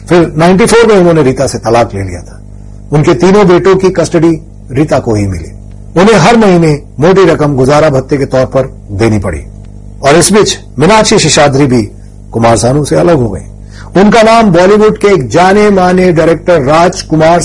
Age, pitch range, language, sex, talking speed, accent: 40-59, 115-170 Hz, Gujarati, male, 110 wpm, native